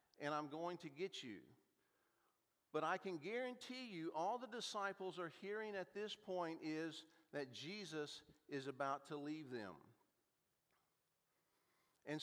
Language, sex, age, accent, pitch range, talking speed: English, male, 50-69, American, 145-195 Hz, 135 wpm